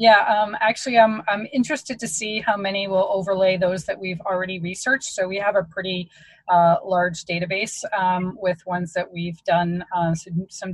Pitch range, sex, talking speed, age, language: 180-205 Hz, female, 190 wpm, 20-39, English